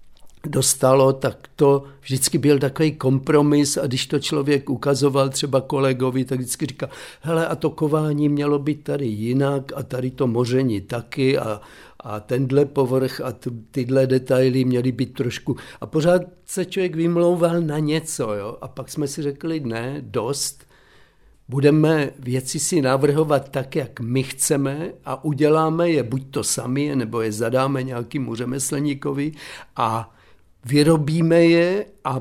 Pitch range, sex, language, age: 130-155 Hz, male, Czech, 50-69